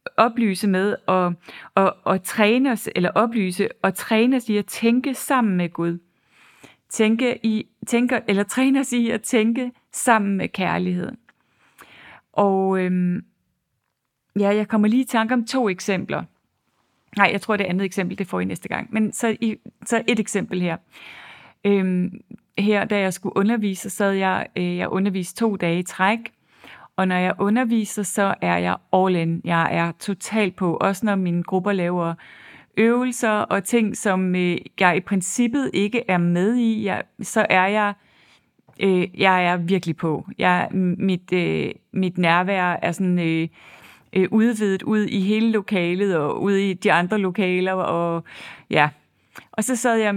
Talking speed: 160 wpm